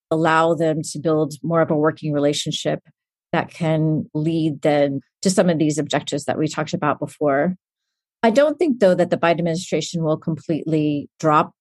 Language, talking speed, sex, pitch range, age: English, 175 wpm, female, 155-185 Hz, 40-59